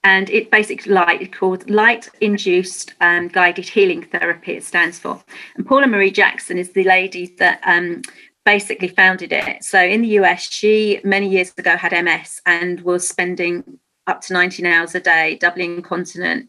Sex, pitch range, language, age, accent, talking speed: female, 175-200 Hz, English, 40-59, British, 170 wpm